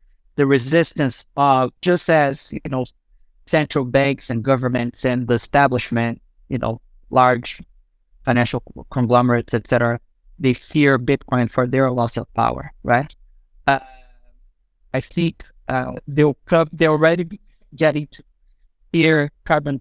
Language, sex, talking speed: English, male, 125 wpm